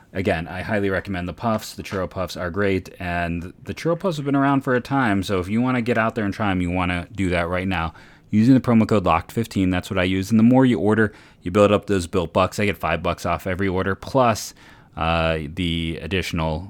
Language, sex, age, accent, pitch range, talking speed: English, male, 30-49, American, 85-105 Hz, 255 wpm